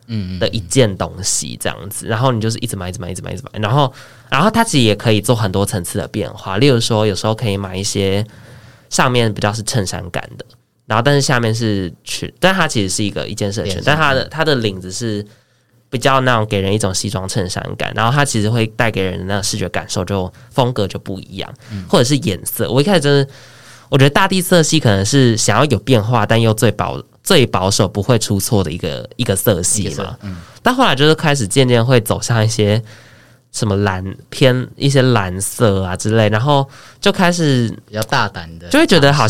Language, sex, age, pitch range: Chinese, male, 20-39, 100-130 Hz